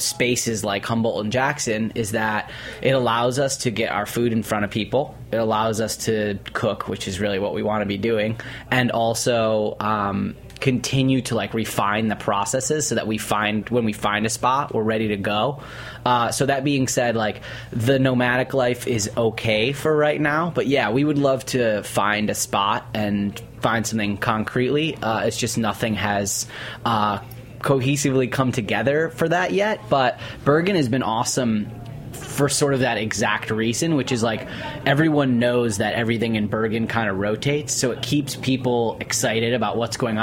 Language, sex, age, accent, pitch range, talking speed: English, male, 20-39, American, 110-130 Hz, 185 wpm